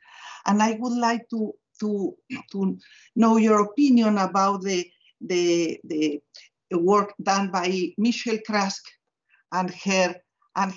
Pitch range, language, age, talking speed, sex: 195-240 Hz, Polish, 50-69, 125 wpm, female